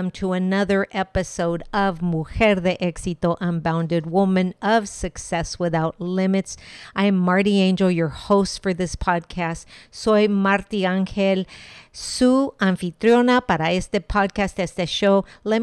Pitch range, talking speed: 180-220 Hz, 125 wpm